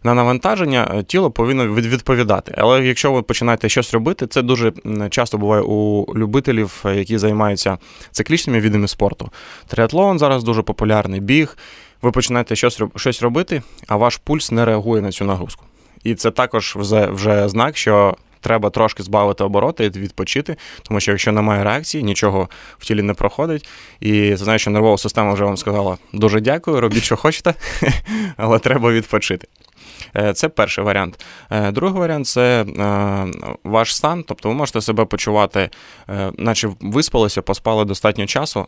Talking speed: 150 wpm